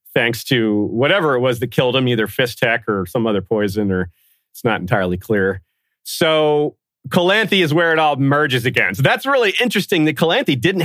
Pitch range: 110-145 Hz